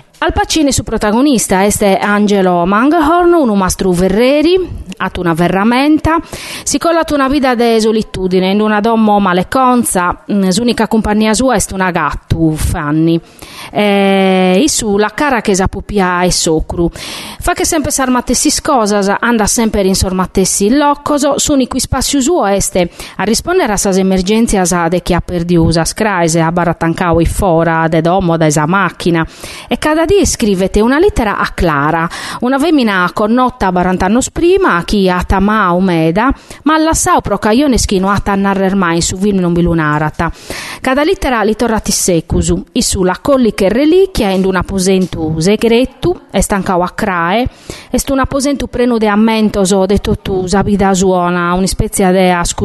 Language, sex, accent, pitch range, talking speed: Italian, female, native, 180-250 Hz, 160 wpm